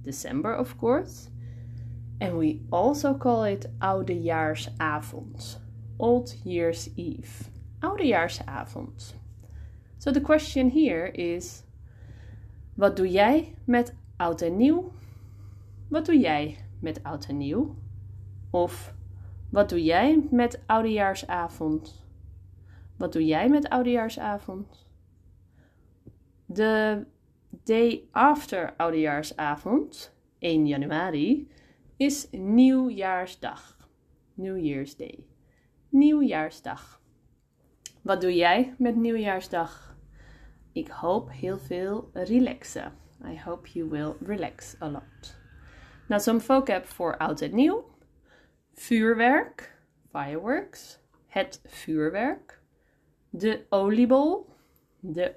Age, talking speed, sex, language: 20-39, 95 wpm, female, Dutch